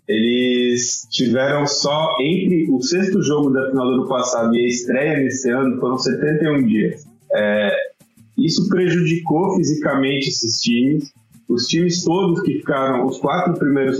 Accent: Brazilian